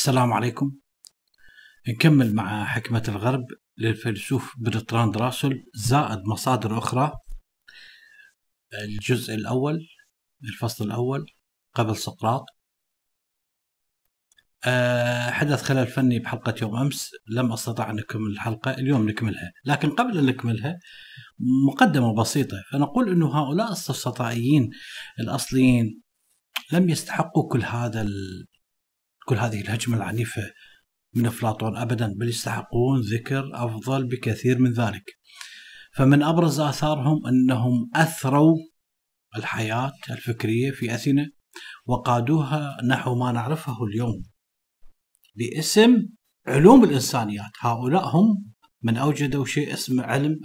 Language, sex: Arabic, male